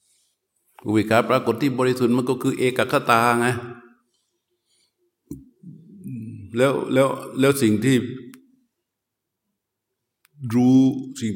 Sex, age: male, 60-79